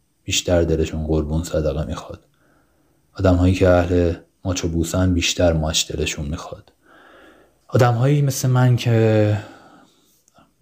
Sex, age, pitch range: male, 30-49, 85-110 Hz